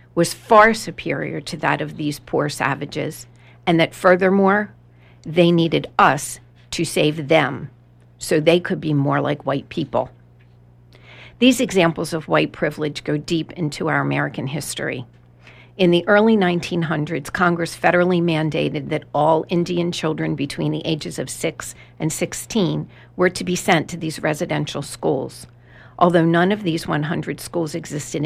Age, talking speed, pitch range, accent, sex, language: 50-69, 150 wpm, 120-175 Hz, American, female, English